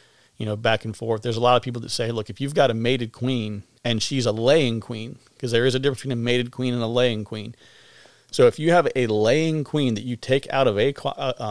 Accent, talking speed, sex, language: American, 260 wpm, male, English